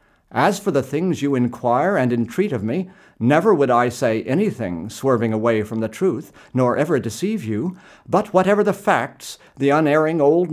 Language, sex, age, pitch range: English, male, 50-69, 115-180 Hz